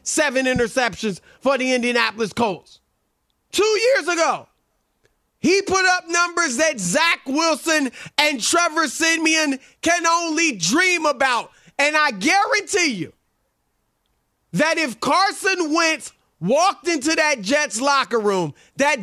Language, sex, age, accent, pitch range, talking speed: English, male, 30-49, American, 265-360 Hz, 120 wpm